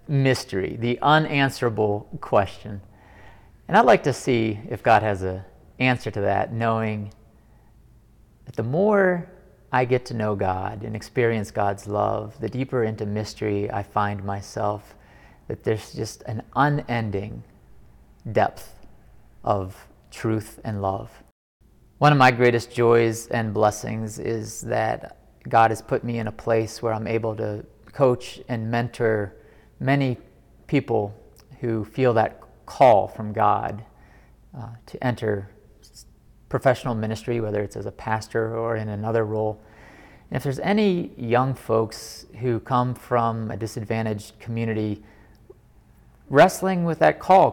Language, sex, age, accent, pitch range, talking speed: English, male, 30-49, American, 105-125 Hz, 135 wpm